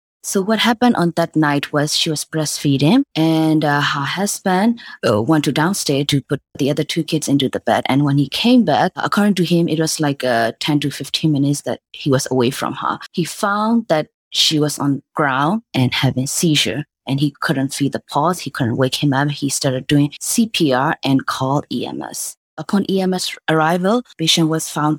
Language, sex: English, female